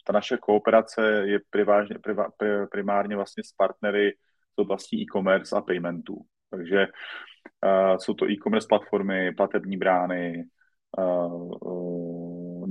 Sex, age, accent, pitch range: male, 30-49, native, 95-110 Hz